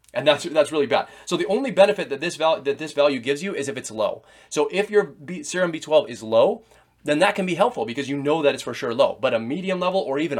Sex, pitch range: male, 120-180 Hz